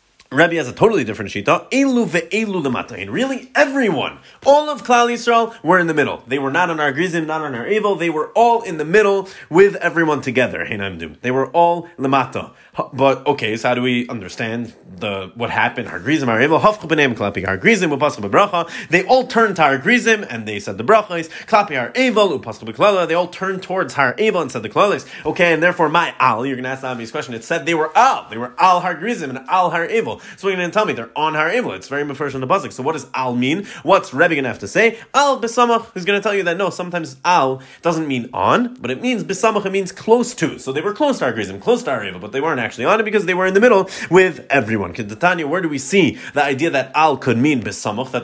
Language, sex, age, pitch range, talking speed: English, male, 30-49, 130-195 Hz, 225 wpm